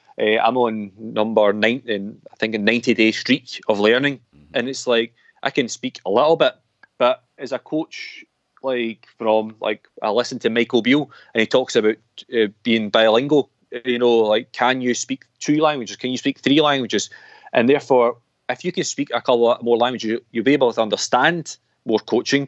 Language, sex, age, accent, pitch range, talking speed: English, male, 30-49, British, 110-135 Hz, 190 wpm